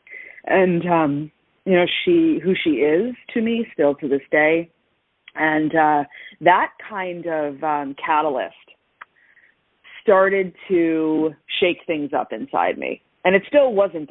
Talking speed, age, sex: 135 wpm, 30-49, female